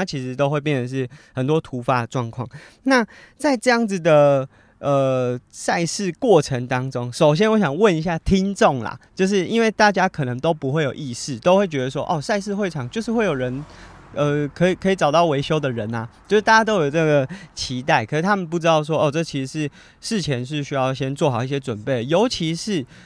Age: 20-39